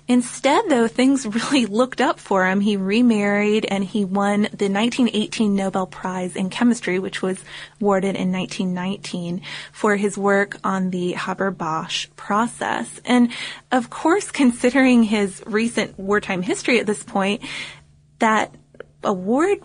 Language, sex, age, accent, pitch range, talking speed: English, female, 20-39, American, 190-220 Hz, 135 wpm